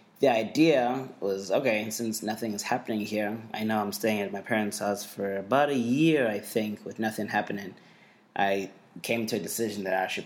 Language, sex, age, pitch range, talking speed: English, male, 20-39, 100-120 Hz, 200 wpm